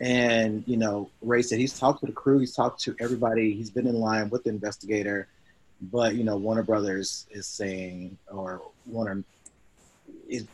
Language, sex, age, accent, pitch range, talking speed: English, male, 30-49, American, 100-120 Hz, 175 wpm